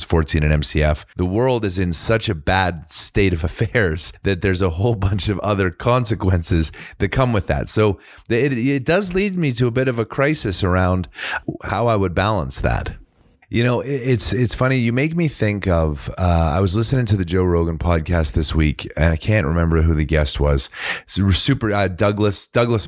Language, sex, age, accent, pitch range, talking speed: English, male, 30-49, American, 80-110 Hz, 205 wpm